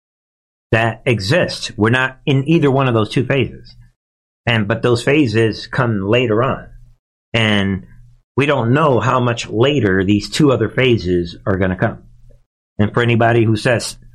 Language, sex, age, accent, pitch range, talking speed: English, male, 50-69, American, 105-140 Hz, 160 wpm